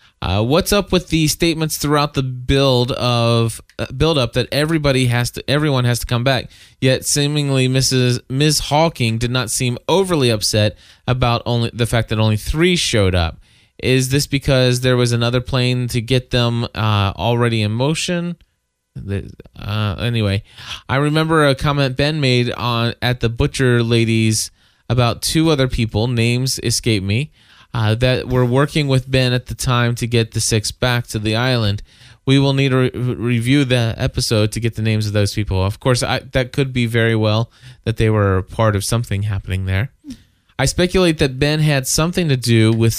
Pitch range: 110-130 Hz